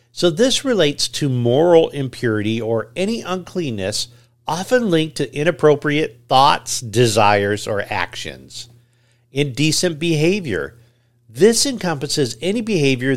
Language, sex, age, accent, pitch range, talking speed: English, male, 50-69, American, 120-155 Hz, 105 wpm